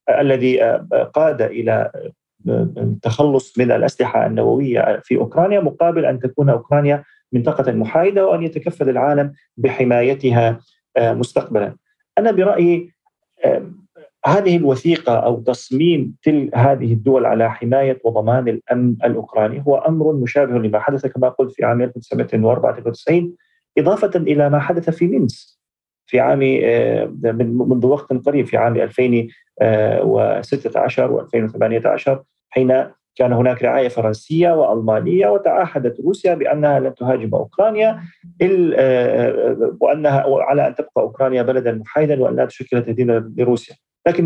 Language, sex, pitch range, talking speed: Arabic, male, 120-165 Hz, 115 wpm